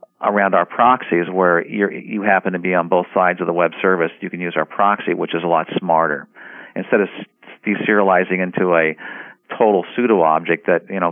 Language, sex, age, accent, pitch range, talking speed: English, male, 50-69, American, 85-100 Hz, 195 wpm